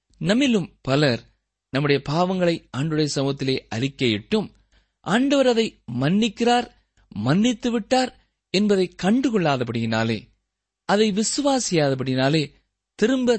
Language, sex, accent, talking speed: Tamil, male, native, 80 wpm